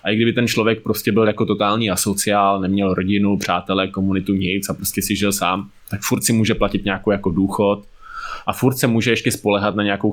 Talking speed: 215 wpm